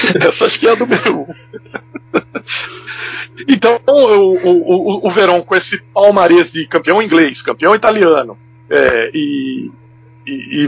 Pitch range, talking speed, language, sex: 140-220 Hz, 140 wpm, Portuguese, male